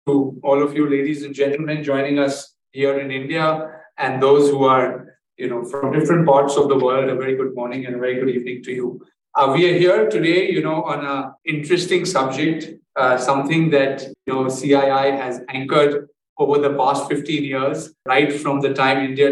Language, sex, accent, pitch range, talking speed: English, male, Indian, 135-155 Hz, 200 wpm